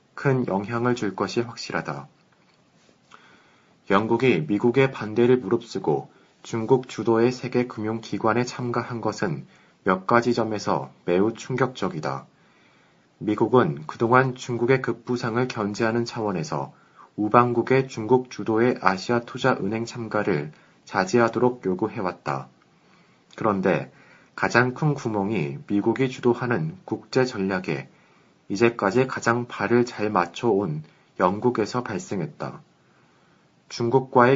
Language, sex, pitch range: Korean, male, 105-125 Hz